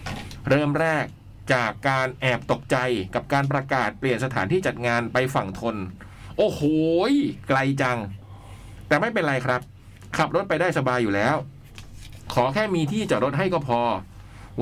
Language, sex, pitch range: Thai, male, 105-155 Hz